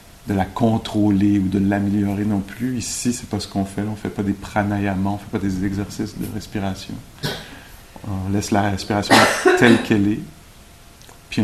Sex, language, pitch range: male, English, 95-110 Hz